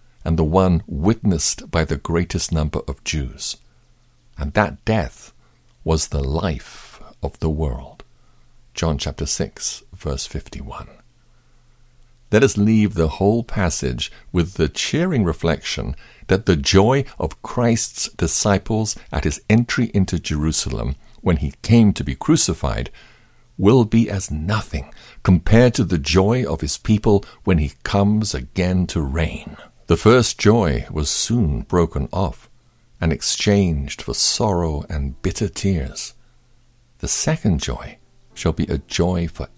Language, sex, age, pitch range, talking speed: English, male, 60-79, 80-105 Hz, 135 wpm